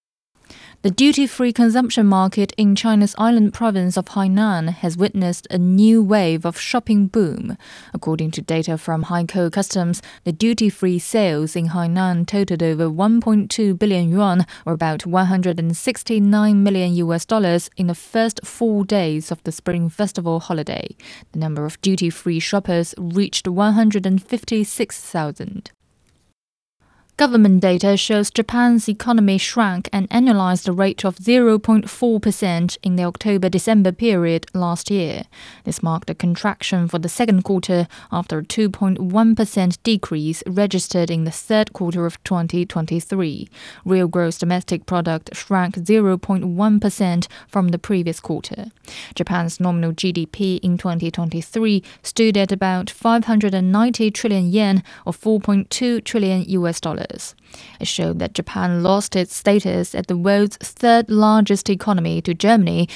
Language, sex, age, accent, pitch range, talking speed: English, female, 20-39, British, 175-215 Hz, 130 wpm